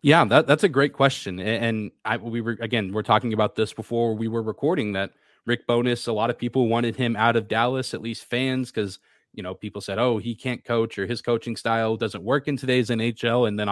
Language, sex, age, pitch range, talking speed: English, male, 20-39, 110-130 Hz, 235 wpm